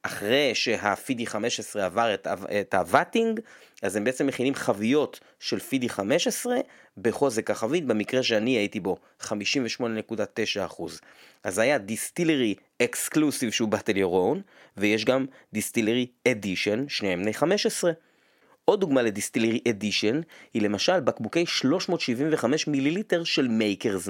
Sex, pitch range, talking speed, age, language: male, 115-175 Hz, 120 wpm, 30-49, Hebrew